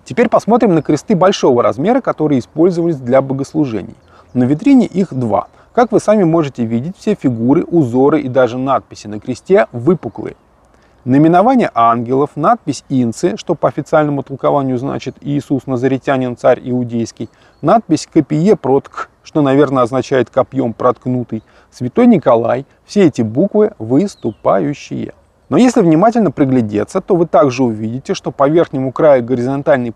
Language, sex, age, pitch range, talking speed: Russian, male, 20-39, 130-185 Hz, 135 wpm